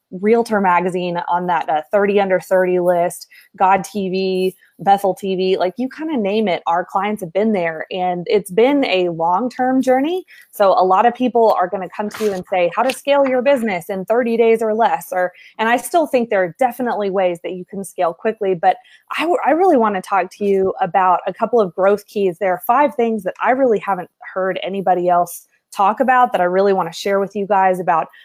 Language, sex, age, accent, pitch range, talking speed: English, female, 20-39, American, 180-225 Hz, 225 wpm